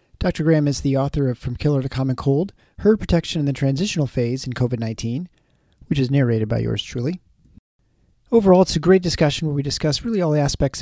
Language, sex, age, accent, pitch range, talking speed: English, male, 40-59, American, 125-165 Hz, 205 wpm